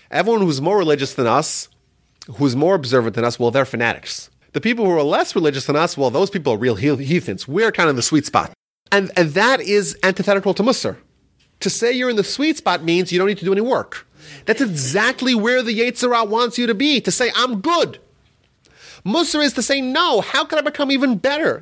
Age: 30-49